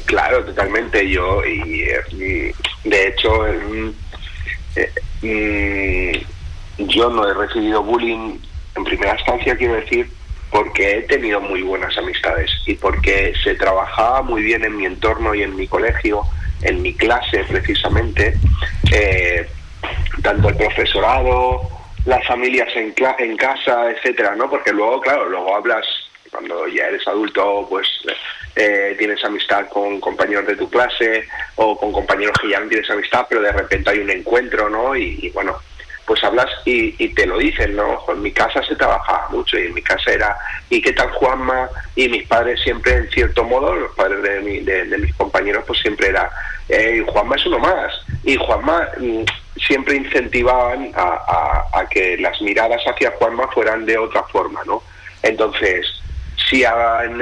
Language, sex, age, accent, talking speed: Spanish, male, 30-49, Spanish, 165 wpm